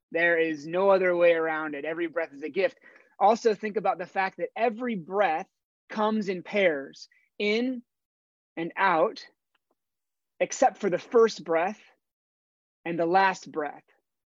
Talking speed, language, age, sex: 145 wpm, English, 30-49, male